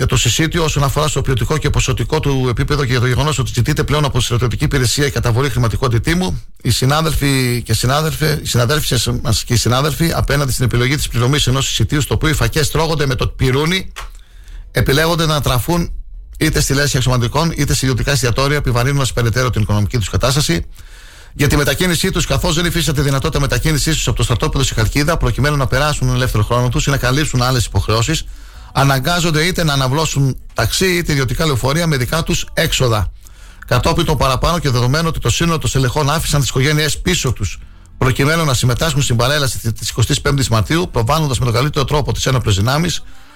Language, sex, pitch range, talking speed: Greek, male, 120-150 Hz, 185 wpm